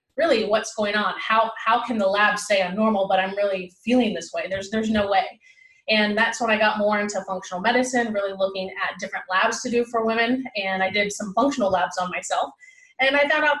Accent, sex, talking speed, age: American, female, 230 wpm, 30-49